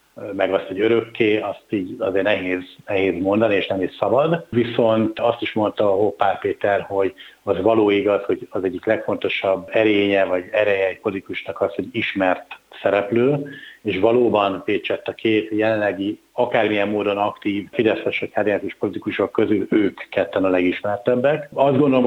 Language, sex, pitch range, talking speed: Hungarian, male, 100-115 Hz, 155 wpm